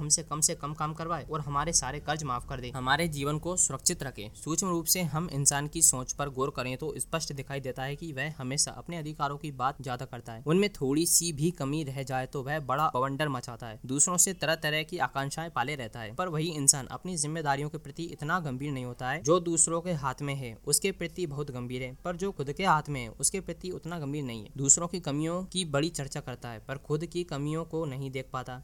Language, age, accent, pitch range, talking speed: Hindi, 20-39, native, 135-160 Hz, 245 wpm